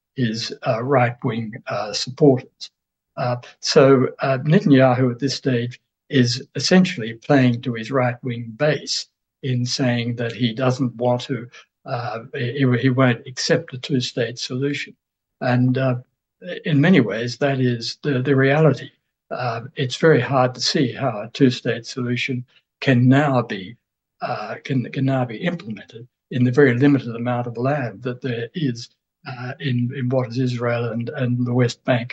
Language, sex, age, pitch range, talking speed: English, male, 60-79, 120-135 Hz, 155 wpm